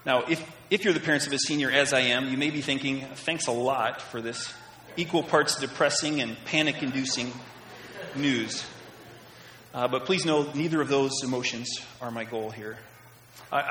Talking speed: 175 wpm